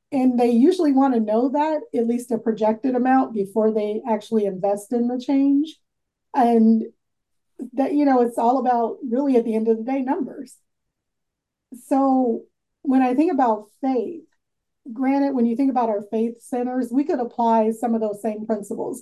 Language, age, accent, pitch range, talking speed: English, 30-49, American, 215-250 Hz, 175 wpm